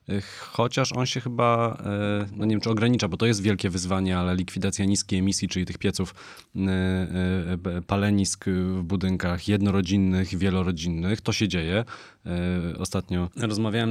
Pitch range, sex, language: 90-110 Hz, male, Polish